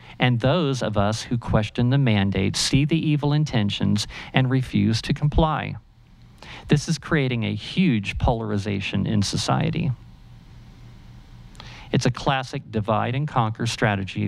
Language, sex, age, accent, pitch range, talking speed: English, male, 50-69, American, 110-135 Hz, 130 wpm